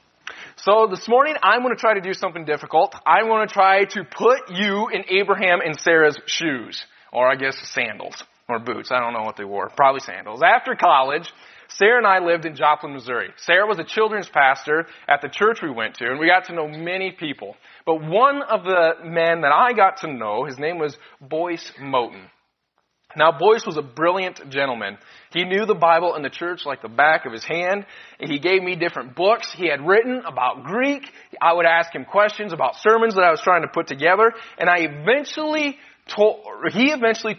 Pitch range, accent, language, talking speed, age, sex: 155-215 Hz, American, English, 205 wpm, 20-39, male